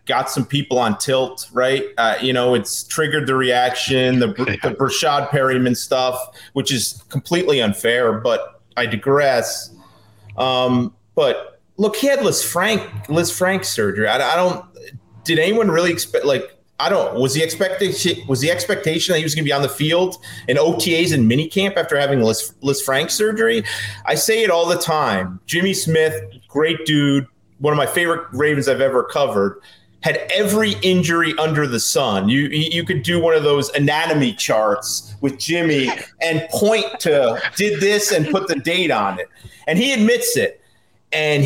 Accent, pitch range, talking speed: American, 130-175 Hz, 175 wpm